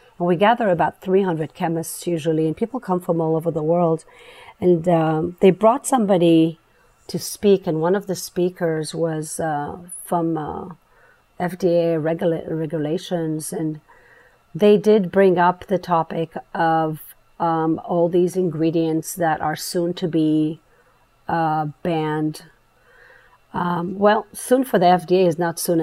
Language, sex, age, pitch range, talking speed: English, female, 40-59, 160-180 Hz, 140 wpm